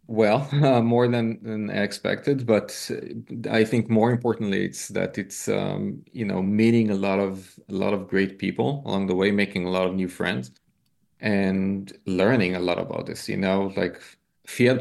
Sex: male